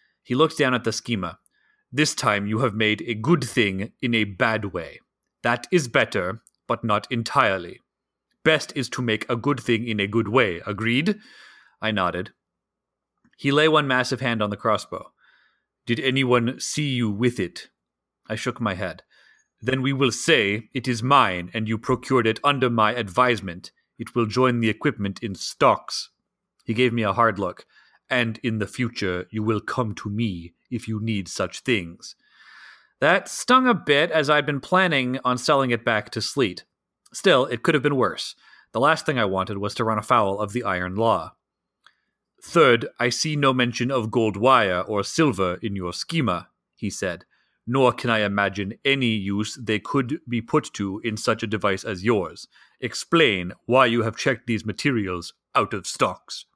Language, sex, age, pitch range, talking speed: English, male, 30-49, 105-130 Hz, 180 wpm